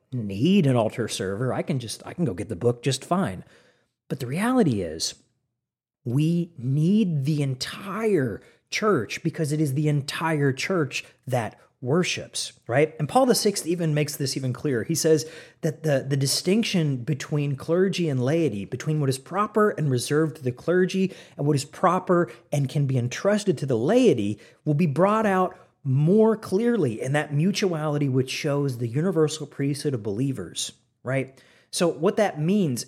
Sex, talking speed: male, 170 wpm